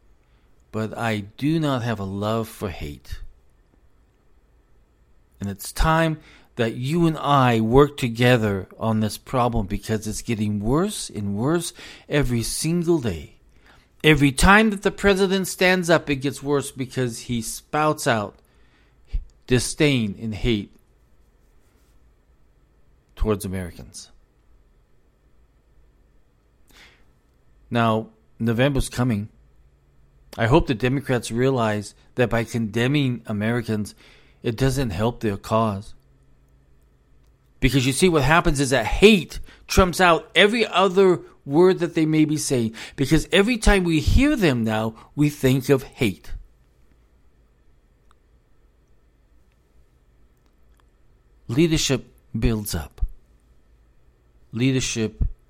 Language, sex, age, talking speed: English, male, 50-69, 105 wpm